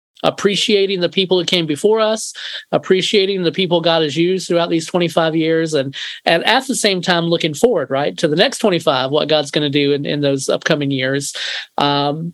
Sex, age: male, 40-59